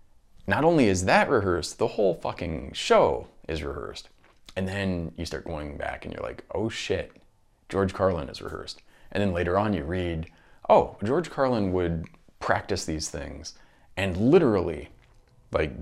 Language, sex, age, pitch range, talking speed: English, male, 30-49, 80-100 Hz, 160 wpm